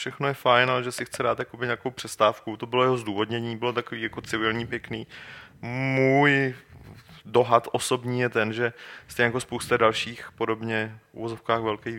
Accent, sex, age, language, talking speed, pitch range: native, male, 30-49, Czech, 160 wpm, 105-120 Hz